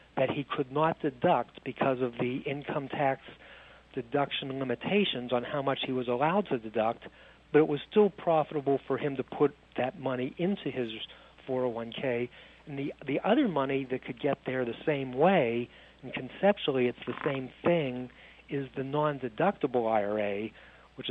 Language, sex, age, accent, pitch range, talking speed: English, male, 60-79, American, 120-145 Hz, 160 wpm